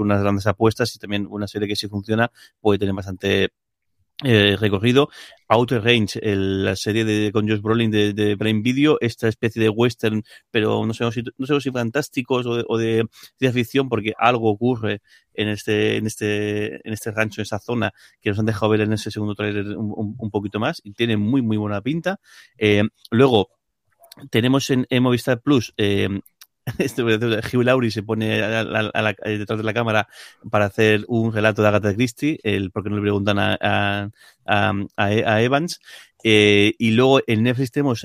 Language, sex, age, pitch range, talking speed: Spanish, male, 30-49, 105-115 Hz, 195 wpm